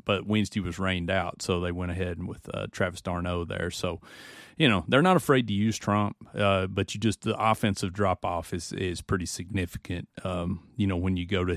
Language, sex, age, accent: English, male, 30-49, American